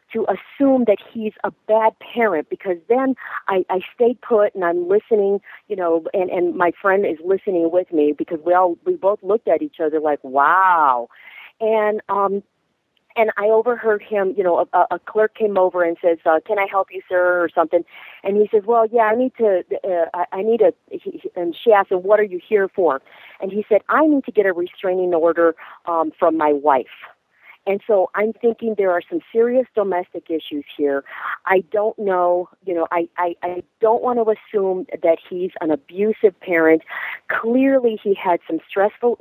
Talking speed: 195 wpm